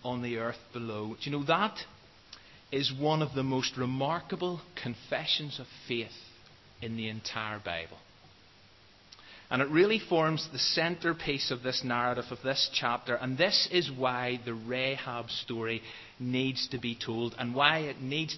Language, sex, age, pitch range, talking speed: English, male, 30-49, 115-145 Hz, 155 wpm